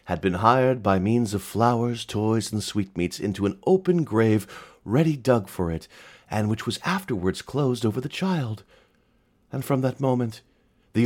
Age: 40-59